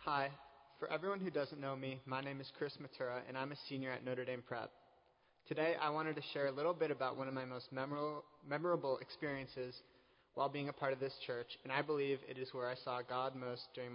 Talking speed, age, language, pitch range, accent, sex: 230 wpm, 20-39, English, 130-155 Hz, American, male